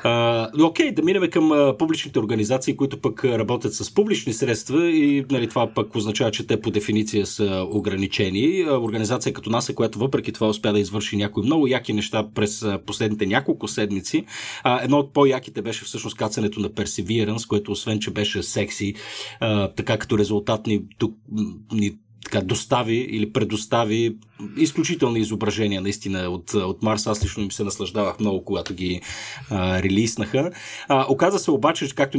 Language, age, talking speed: Bulgarian, 30-49, 165 wpm